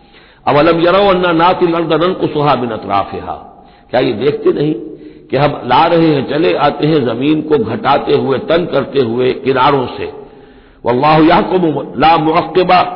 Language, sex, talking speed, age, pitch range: Hindi, male, 140 wpm, 60-79, 110-155 Hz